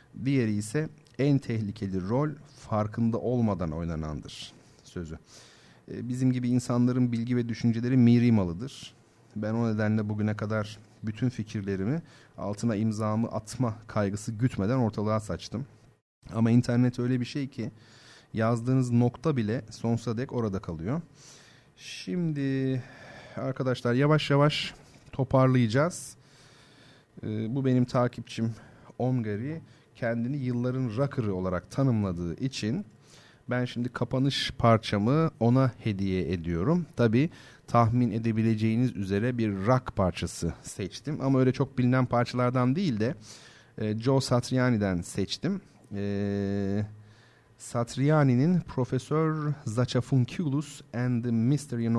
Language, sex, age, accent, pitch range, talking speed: Turkish, male, 40-59, native, 110-130 Hz, 105 wpm